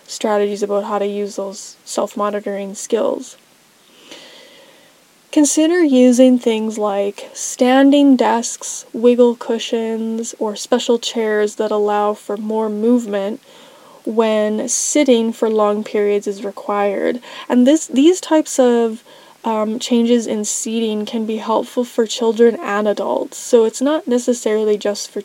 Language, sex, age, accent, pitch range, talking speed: English, female, 10-29, American, 210-260 Hz, 125 wpm